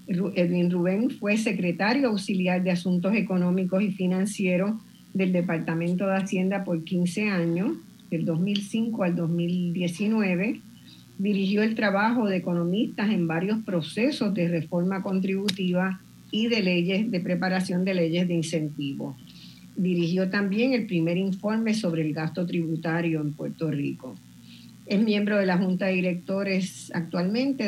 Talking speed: 130 wpm